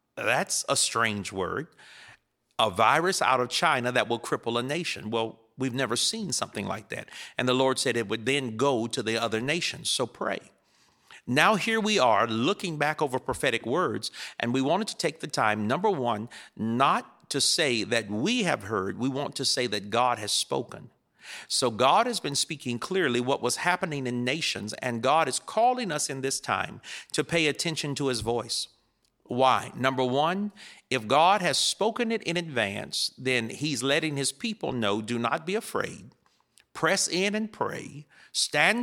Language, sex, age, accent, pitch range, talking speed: English, male, 50-69, American, 120-170 Hz, 180 wpm